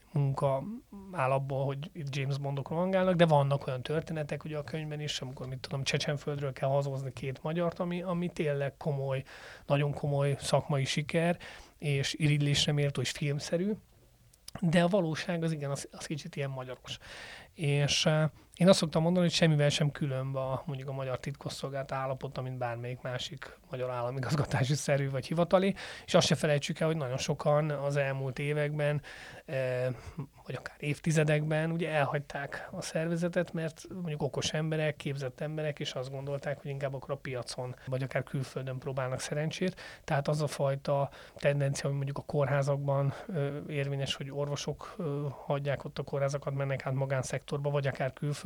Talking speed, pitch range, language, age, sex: 150 wpm, 135-155 Hz, Hungarian, 30-49, male